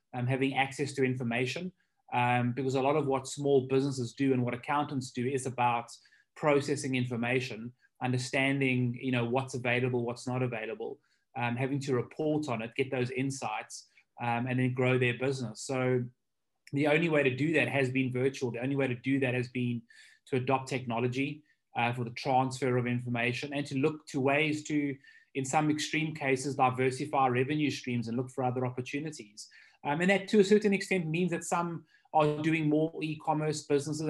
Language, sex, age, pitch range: English, male, 20-39, 125-145 Hz